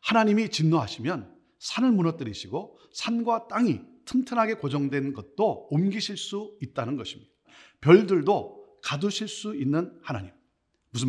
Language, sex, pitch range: Korean, male, 135-230 Hz